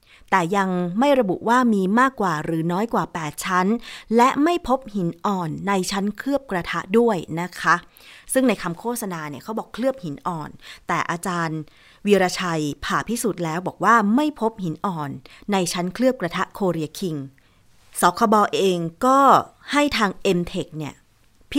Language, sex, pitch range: Thai, female, 170-220 Hz